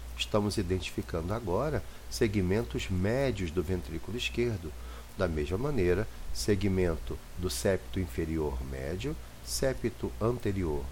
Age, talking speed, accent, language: 50-69, 100 wpm, Brazilian, Portuguese